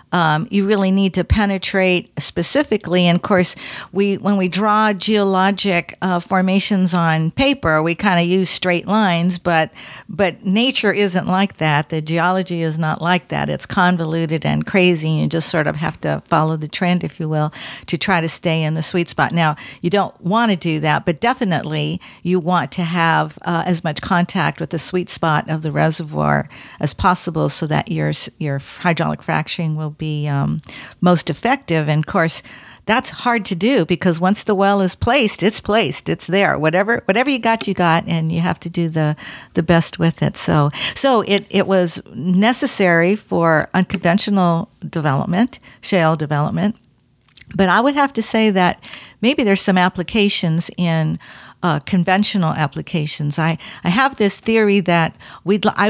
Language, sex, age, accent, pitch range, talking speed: English, female, 50-69, American, 160-195 Hz, 180 wpm